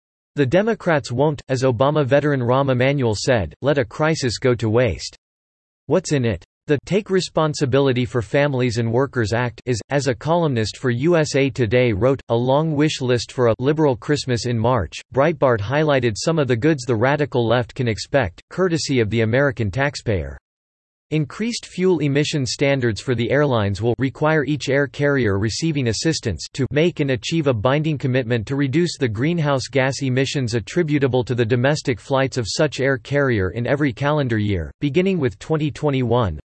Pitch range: 120-145 Hz